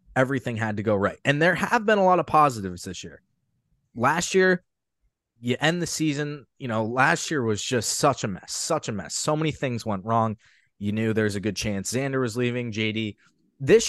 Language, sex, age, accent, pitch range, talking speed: English, male, 20-39, American, 105-145 Hz, 210 wpm